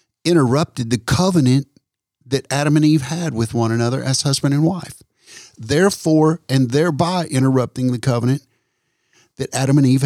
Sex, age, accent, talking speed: male, 50-69, American, 150 wpm